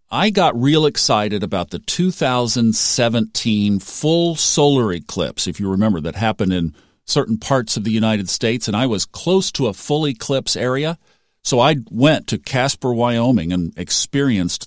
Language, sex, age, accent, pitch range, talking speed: English, male, 50-69, American, 95-130 Hz, 160 wpm